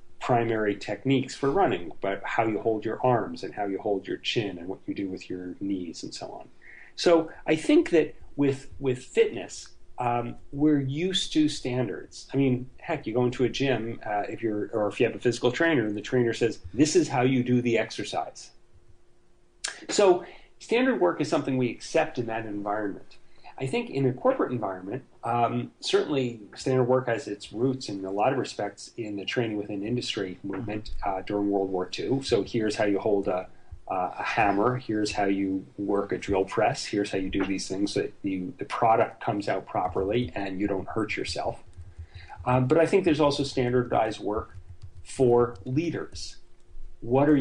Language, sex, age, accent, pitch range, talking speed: English, male, 40-59, American, 100-135 Hz, 190 wpm